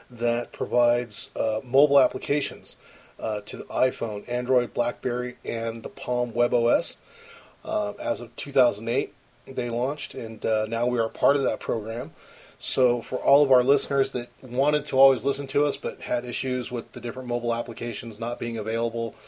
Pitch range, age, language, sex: 115-135 Hz, 30-49, English, male